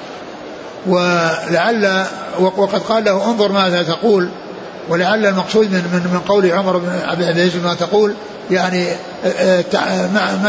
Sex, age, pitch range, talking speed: male, 60-79, 175-200 Hz, 115 wpm